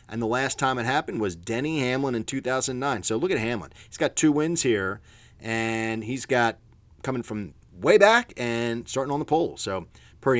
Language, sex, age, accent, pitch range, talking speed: English, male, 30-49, American, 105-135 Hz, 195 wpm